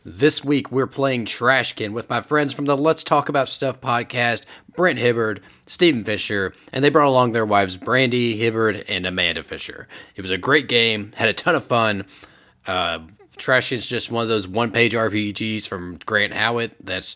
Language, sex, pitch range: English, male, 105-130 Hz